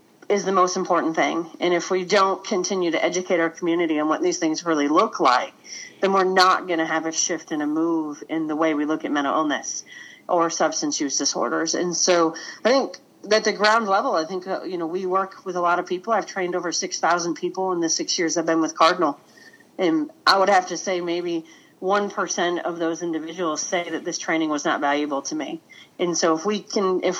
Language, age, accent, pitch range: English, 40-59, American, 160-185 Hz